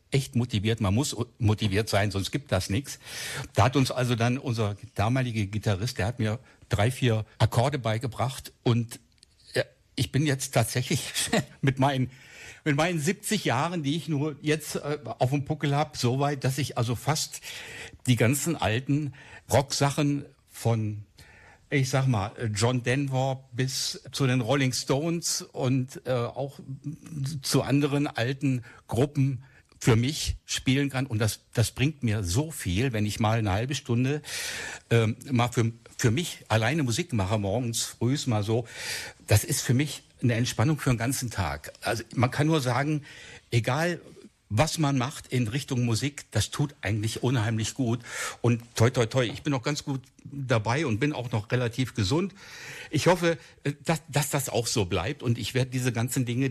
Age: 60-79